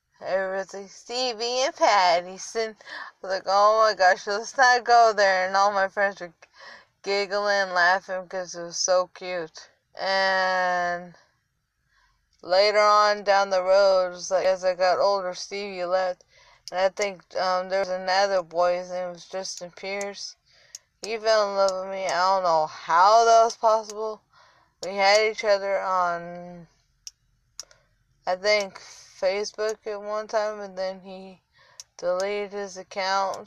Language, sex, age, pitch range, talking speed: English, female, 20-39, 180-205 Hz, 150 wpm